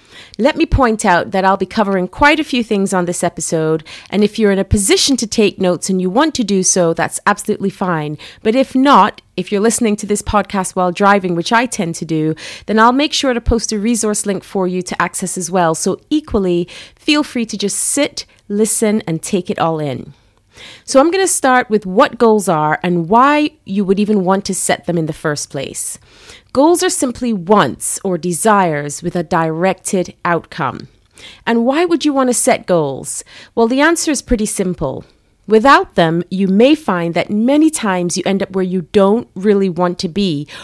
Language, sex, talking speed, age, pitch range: English, female, 210 wpm, 30-49, 180-255 Hz